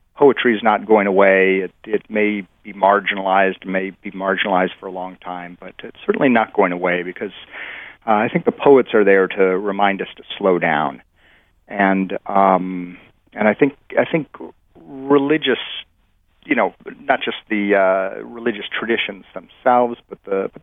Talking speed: 165 wpm